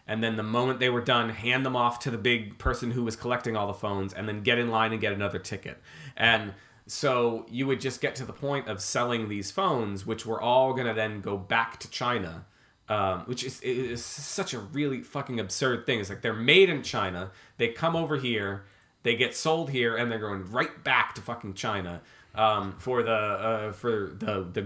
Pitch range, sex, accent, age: 110-135 Hz, male, American, 30-49